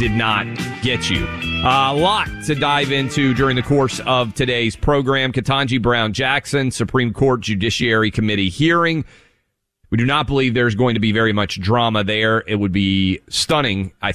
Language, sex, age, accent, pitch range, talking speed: English, male, 40-59, American, 100-125 Hz, 175 wpm